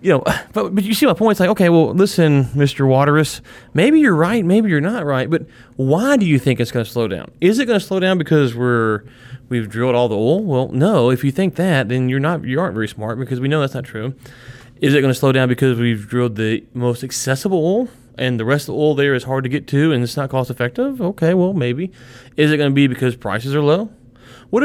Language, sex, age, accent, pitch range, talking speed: English, male, 30-49, American, 120-150 Hz, 260 wpm